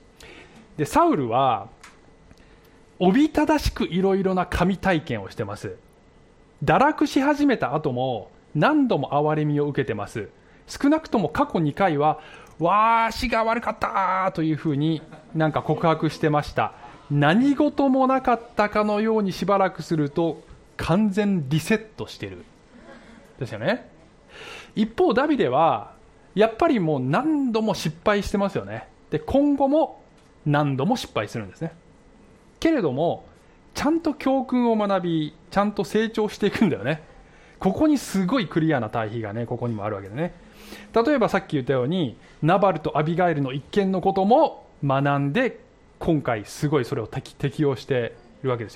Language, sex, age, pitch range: Japanese, male, 20-39, 150-230 Hz